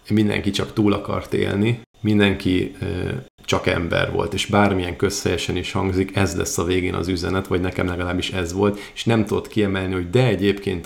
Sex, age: male, 40-59